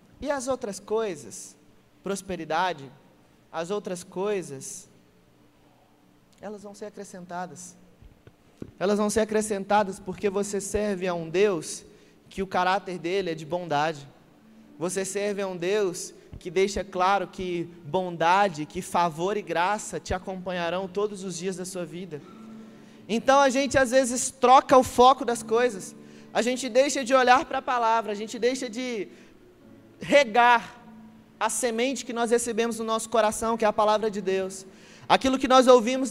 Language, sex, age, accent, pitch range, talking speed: Gujarati, male, 20-39, Brazilian, 185-245 Hz, 155 wpm